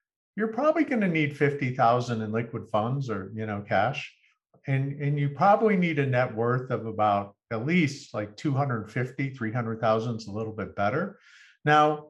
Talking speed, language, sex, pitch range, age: 195 wpm, English, male, 110-150 Hz, 50-69